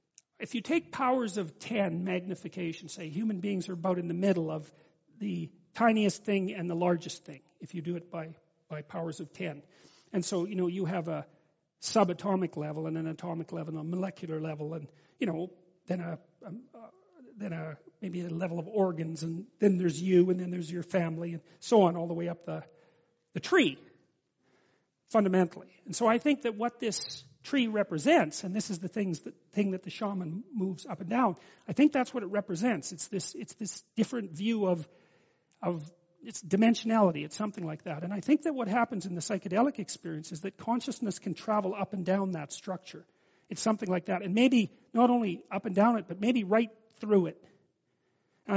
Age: 40-59